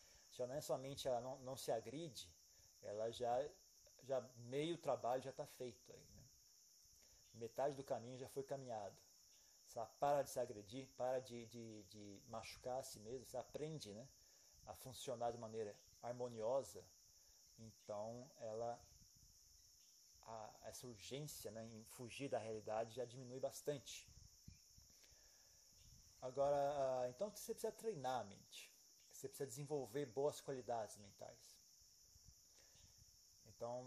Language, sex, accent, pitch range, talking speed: Portuguese, male, Brazilian, 110-140 Hz, 130 wpm